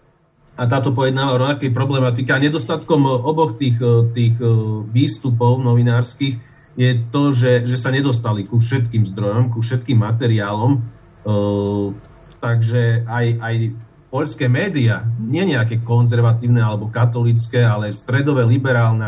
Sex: male